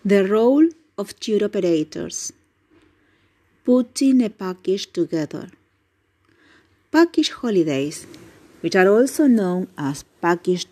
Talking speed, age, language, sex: 95 wpm, 40-59, English, female